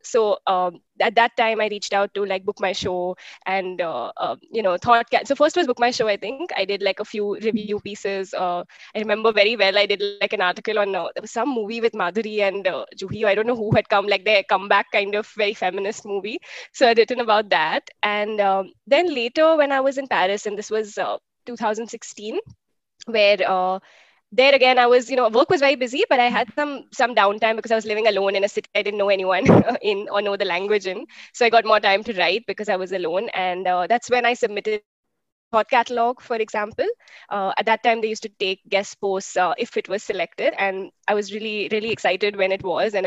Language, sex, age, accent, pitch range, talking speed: English, female, 20-39, Indian, 195-230 Hz, 235 wpm